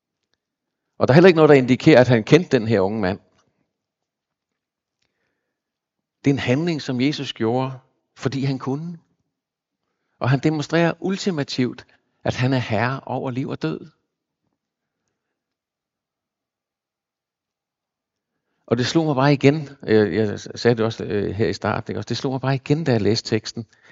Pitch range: 115-140 Hz